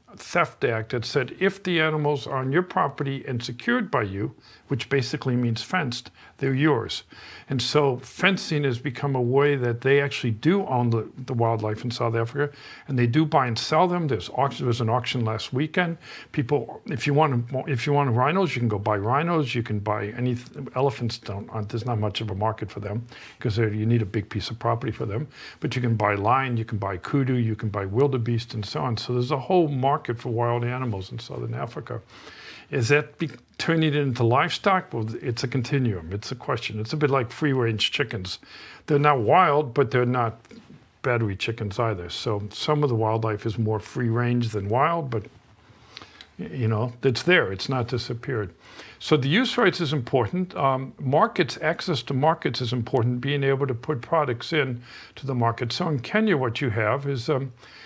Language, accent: English, American